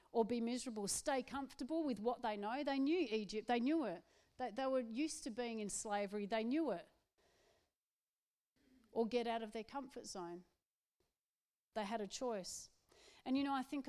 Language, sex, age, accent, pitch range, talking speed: English, female, 40-59, Australian, 210-260 Hz, 180 wpm